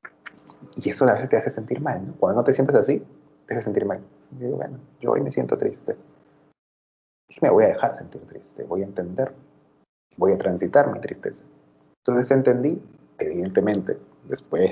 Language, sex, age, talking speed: Spanish, male, 30-49, 185 wpm